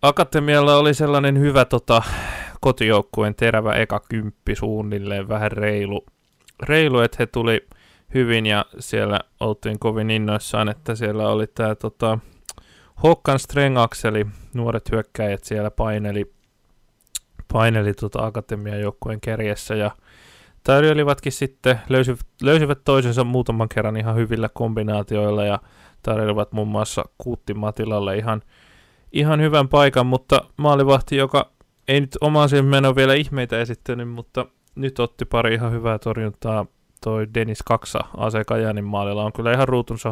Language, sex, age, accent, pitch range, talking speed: Finnish, male, 20-39, native, 105-125 Hz, 130 wpm